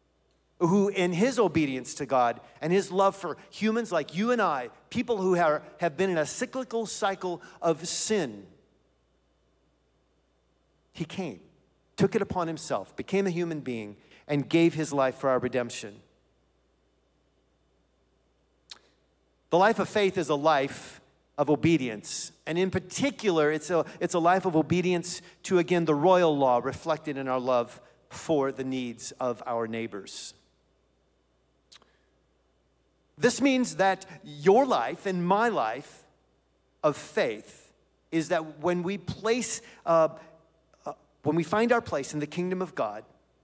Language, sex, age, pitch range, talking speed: English, male, 40-59, 135-185 Hz, 140 wpm